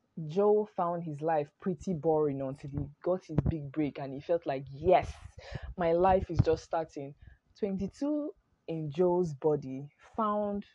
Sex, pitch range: female, 150-205 Hz